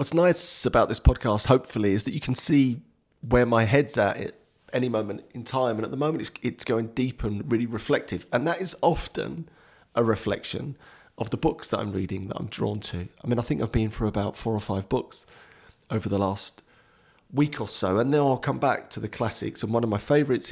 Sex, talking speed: male, 230 wpm